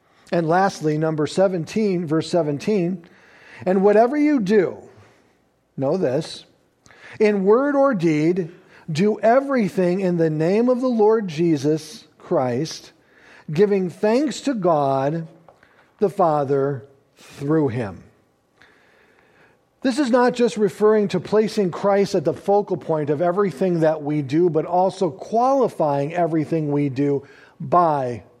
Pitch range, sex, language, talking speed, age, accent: 165-215 Hz, male, English, 125 wpm, 50-69, American